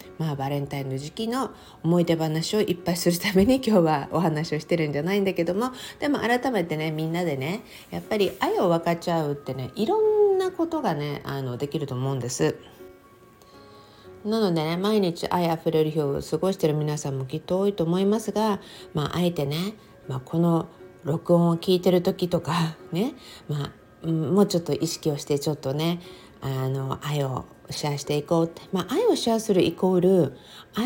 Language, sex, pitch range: Japanese, female, 145-200 Hz